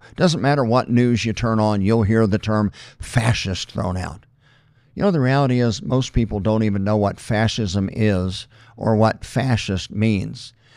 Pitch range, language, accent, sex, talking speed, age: 105-125 Hz, English, American, male, 175 wpm, 50-69